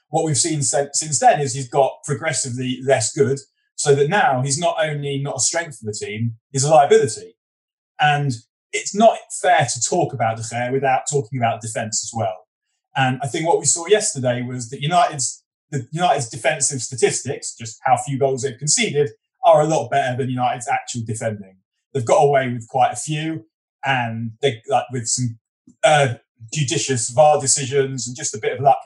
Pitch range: 120-145 Hz